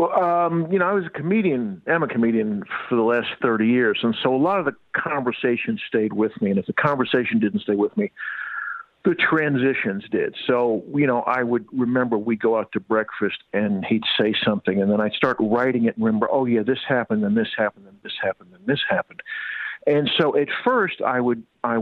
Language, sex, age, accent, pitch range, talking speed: English, male, 50-69, American, 110-155 Hz, 220 wpm